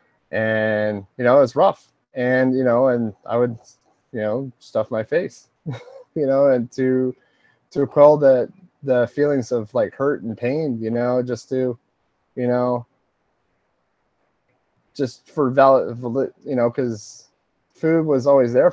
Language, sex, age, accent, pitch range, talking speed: English, male, 20-39, American, 115-135 Hz, 145 wpm